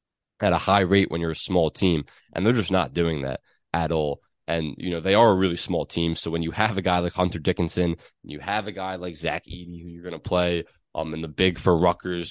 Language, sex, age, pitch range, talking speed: English, male, 20-39, 85-100 Hz, 265 wpm